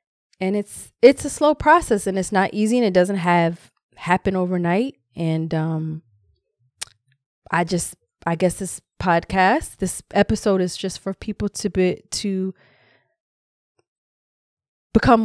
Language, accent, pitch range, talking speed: English, American, 160-205 Hz, 135 wpm